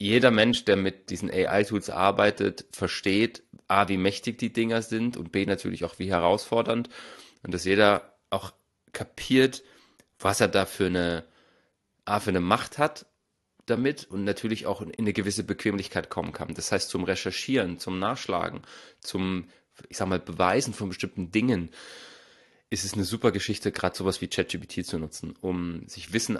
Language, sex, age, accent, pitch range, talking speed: German, male, 30-49, German, 95-110 Hz, 170 wpm